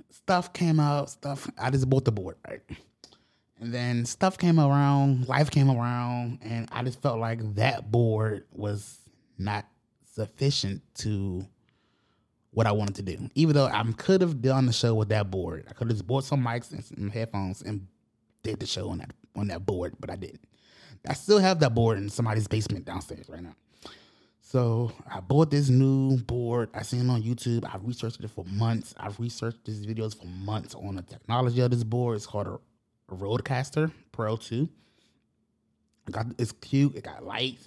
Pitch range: 105-130 Hz